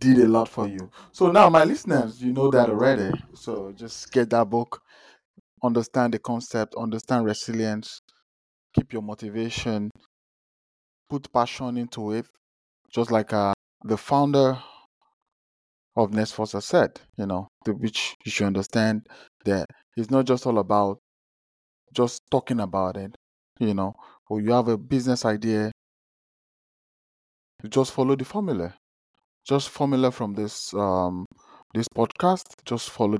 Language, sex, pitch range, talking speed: English, male, 100-125 Hz, 140 wpm